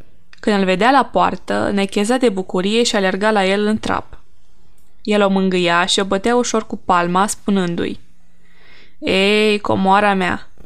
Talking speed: 150 wpm